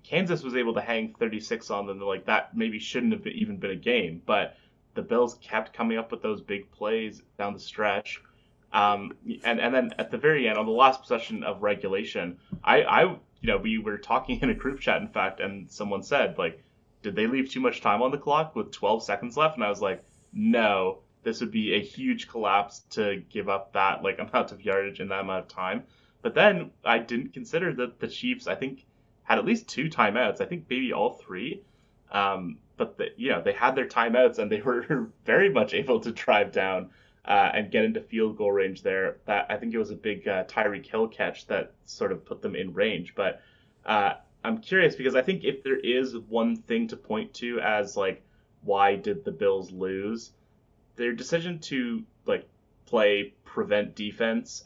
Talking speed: 210 wpm